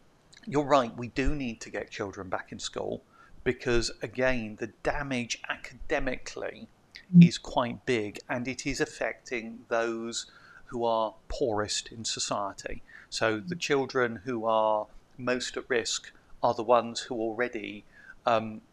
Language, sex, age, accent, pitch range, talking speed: English, male, 40-59, British, 110-135 Hz, 140 wpm